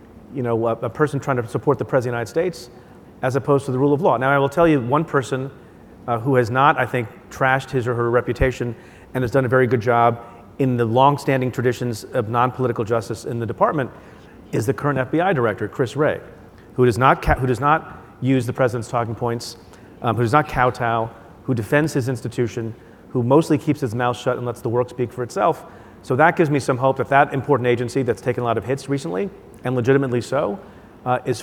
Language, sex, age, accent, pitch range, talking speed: English, male, 40-59, American, 120-145 Hz, 225 wpm